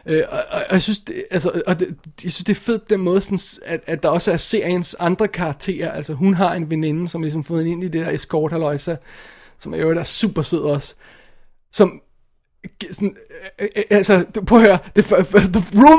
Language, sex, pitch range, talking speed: Danish, male, 165-225 Hz, 160 wpm